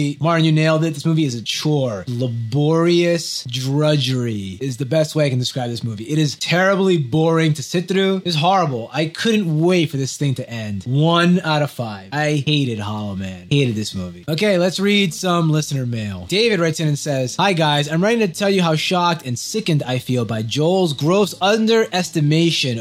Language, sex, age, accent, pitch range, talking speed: English, male, 20-39, American, 130-175 Hz, 200 wpm